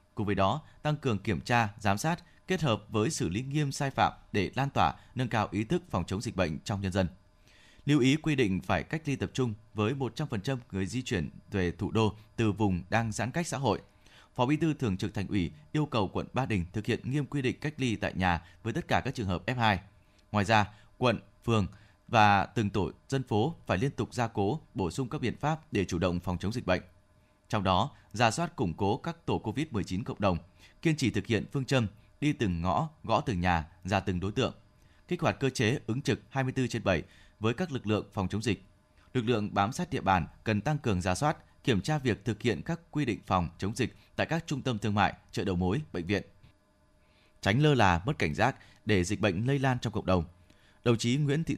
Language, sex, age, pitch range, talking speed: Vietnamese, male, 20-39, 95-130 Hz, 235 wpm